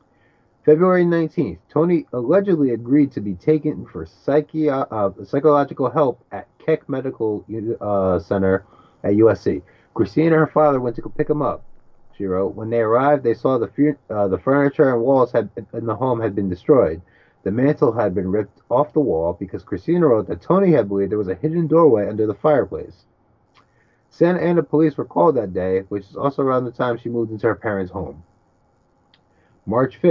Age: 30-49